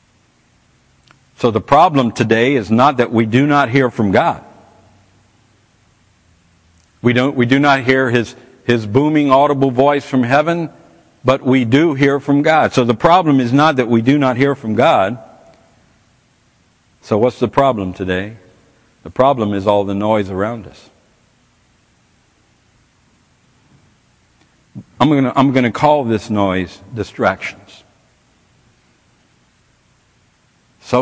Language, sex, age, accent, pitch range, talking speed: English, male, 60-79, American, 105-130 Hz, 130 wpm